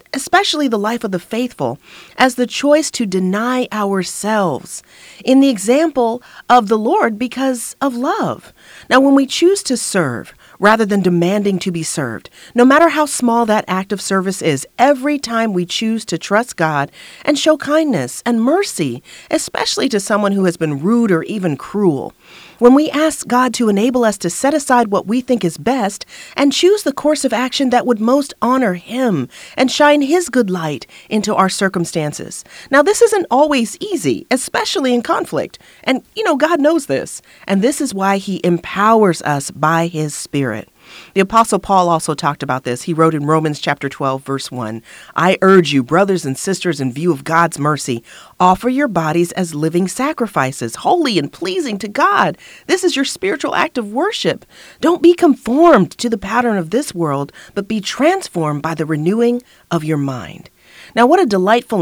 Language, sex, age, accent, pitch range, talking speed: English, female, 40-59, American, 170-260 Hz, 180 wpm